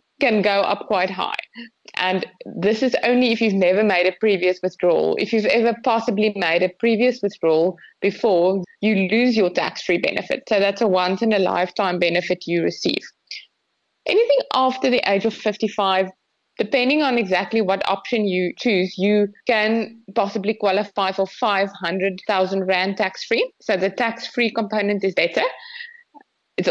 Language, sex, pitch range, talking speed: English, female, 185-230 Hz, 150 wpm